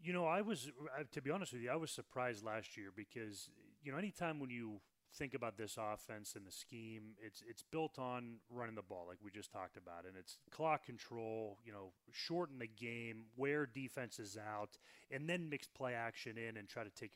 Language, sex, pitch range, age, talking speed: English, male, 110-135 Hz, 30-49, 215 wpm